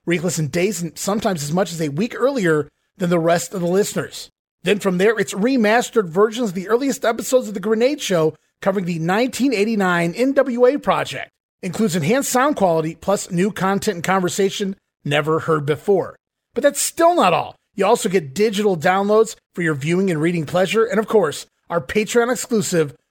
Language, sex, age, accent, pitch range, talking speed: English, male, 30-49, American, 170-220 Hz, 180 wpm